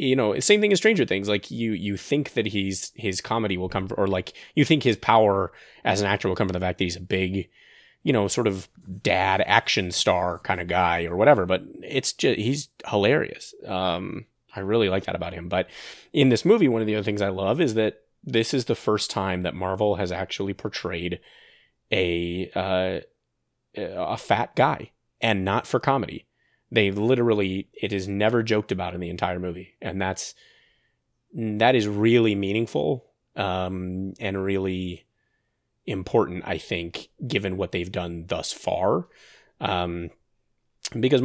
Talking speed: 175 wpm